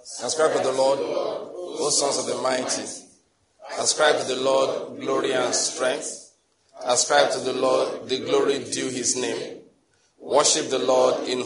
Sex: male